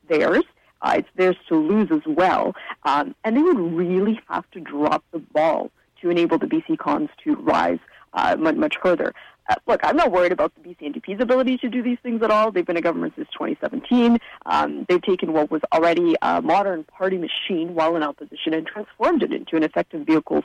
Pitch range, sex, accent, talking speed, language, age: 160-270 Hz, female, American, 210 wpm, English, 30-49